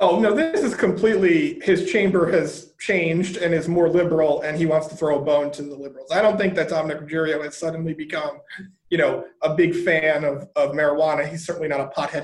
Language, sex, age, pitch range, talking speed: English, male, 30-49, 155-195 Hz, 220 wpm